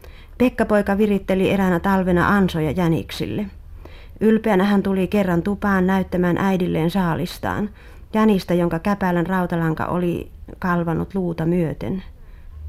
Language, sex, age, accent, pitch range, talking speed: Finnish, female, 30-49, native, 160-205 Hz, 105 wpm